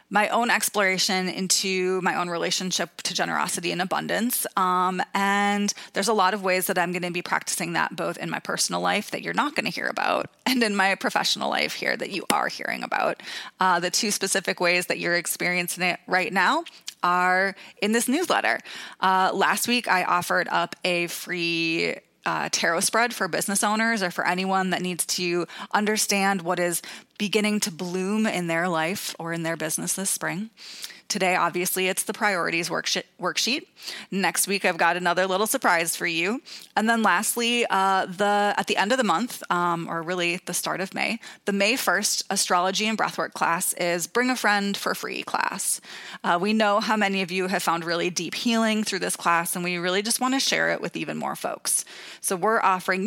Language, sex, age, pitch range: English, female, 20-39, 180-210 Hz